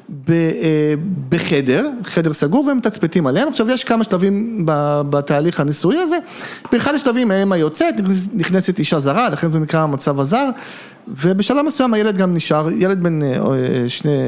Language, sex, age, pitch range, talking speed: Hebrew, male, 40-59, 155-220 Hz, 140 wpm